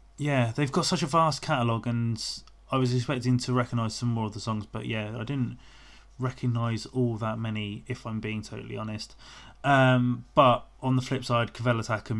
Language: English